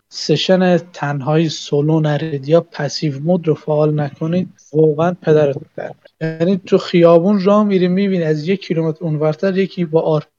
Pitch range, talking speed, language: 155-190 Hz, 145 wpm, Persian